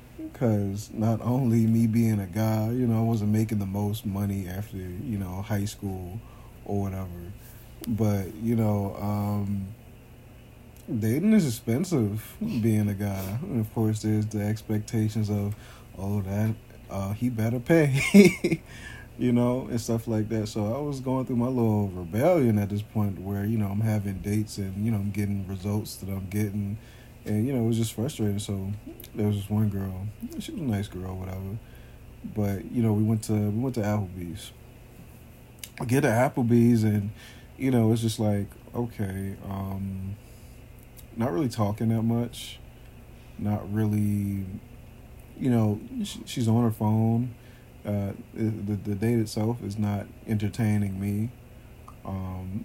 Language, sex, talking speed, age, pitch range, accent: English, male, 160 wpm, 30-49, 100-115 Hz, American